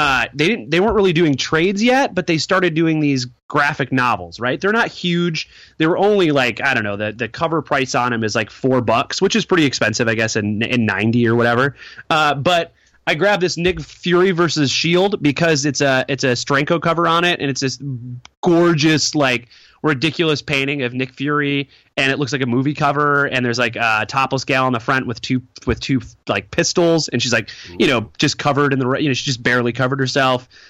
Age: 30-49